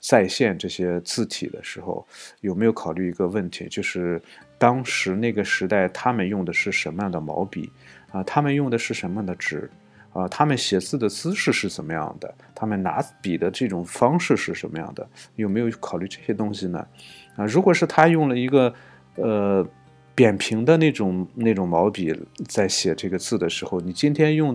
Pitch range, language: 90-125 Hz, Chinese